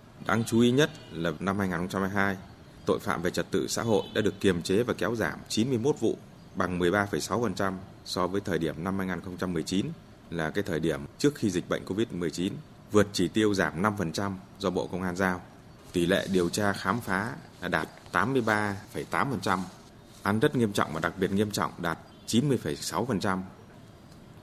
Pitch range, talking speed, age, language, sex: 95-115 Hz, 170 wpm, 20-39, Vietnamese, male